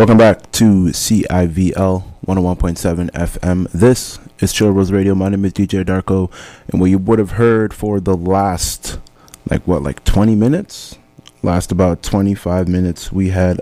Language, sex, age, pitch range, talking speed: English, male, 20-39, 85-100 Hz, 155 wpm